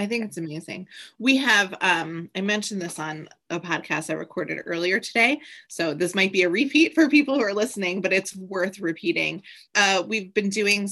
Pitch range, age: 170-215 Hz, 20-39